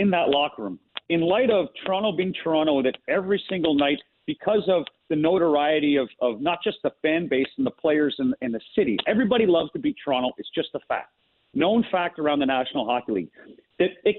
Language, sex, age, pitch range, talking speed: English, male, 40-59, 150-210 Hz, 205 wpm